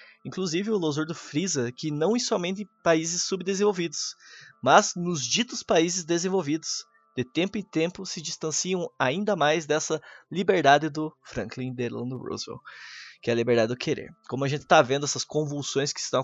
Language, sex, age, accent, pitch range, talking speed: Portuguese, male, 20-39, Brazilian, 140-180 Hz, 170 wpm